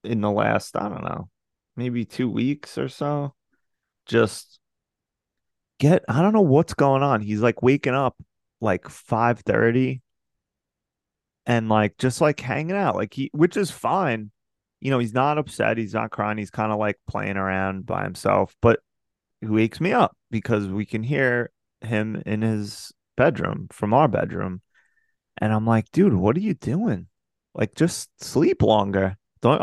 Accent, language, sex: American, English, male